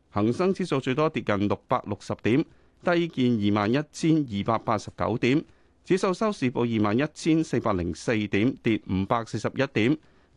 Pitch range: 100-150 Hz